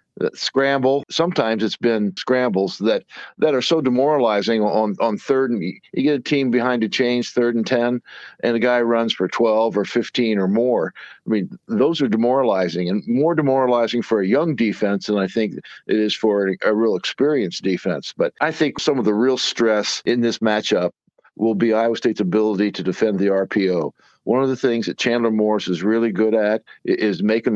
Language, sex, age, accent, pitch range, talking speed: English, male, 60-79, American, 105-125 Hz, 195 wpm